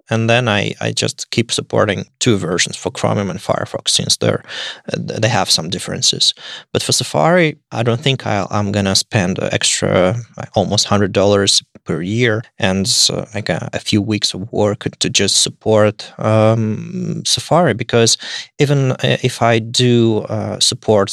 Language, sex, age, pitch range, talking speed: English, male, 20-39, 105-130 Hz, 155 wpm